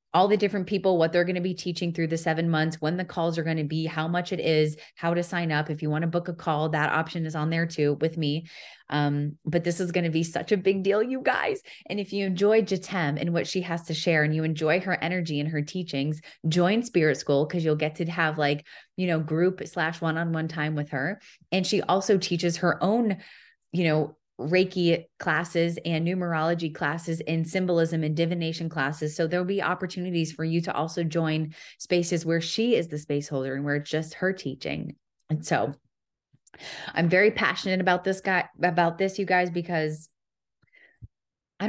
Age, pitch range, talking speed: 20-39, 160-185 Hz, 210 wpm